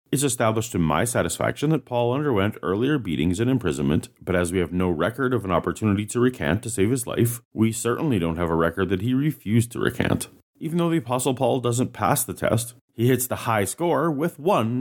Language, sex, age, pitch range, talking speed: English, male, 30-49, 95-135 Hz, 220 wpm